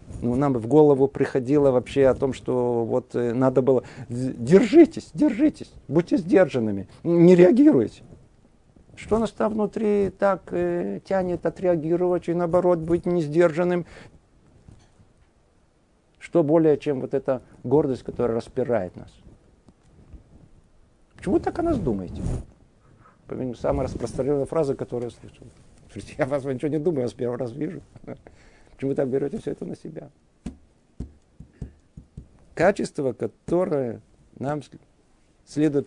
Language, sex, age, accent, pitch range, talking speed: Russian, male, 50-69, native, 120-180 Hz, 125 wpm